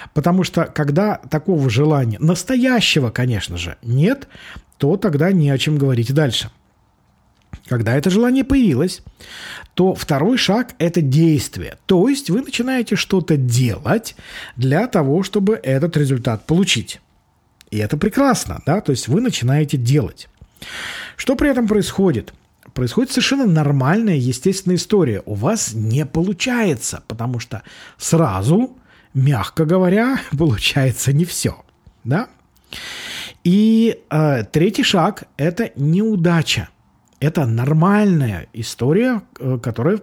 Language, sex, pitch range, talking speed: Russian, male, 130-200 Hz, 115 wpm